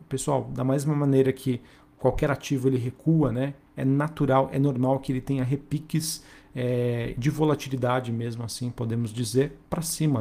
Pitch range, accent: 125-140 Hz, Brazilian